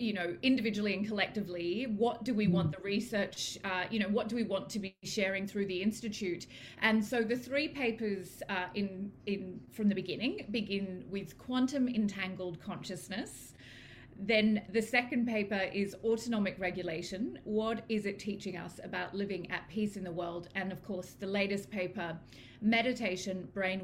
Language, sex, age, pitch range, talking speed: English, female, 30-49, 185-225 Hz, 165 wpm